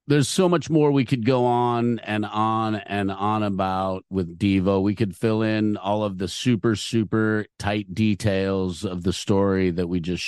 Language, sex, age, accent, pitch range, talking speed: English, male, 50-69, American, 90-110 Hz, 185 wpm